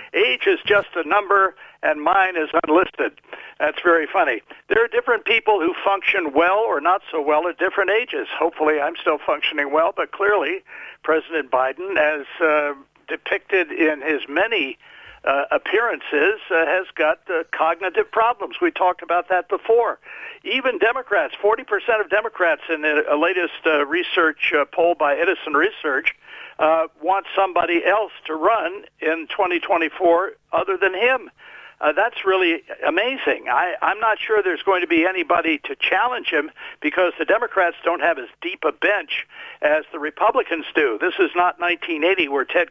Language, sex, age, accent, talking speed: English, male, 60-79, American, 165 wpm